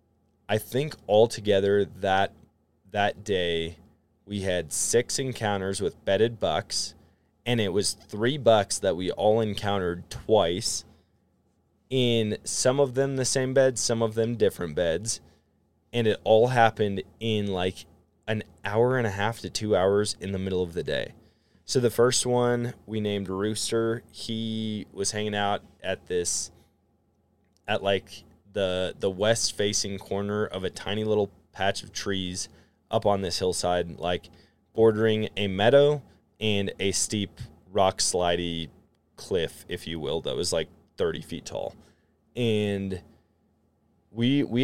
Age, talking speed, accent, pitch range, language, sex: 20-39, 145 wpm, American, 95-115 Hz, English, male